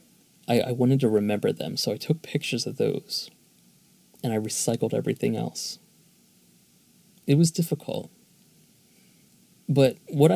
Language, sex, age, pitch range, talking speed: English, male, 20-39, 120-175 Hz, 120 wpm